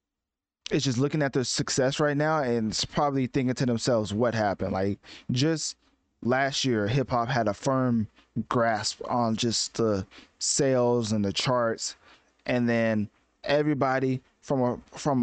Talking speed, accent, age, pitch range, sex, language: 155 wpm, American, 20-39, 110-140 Hz, male, English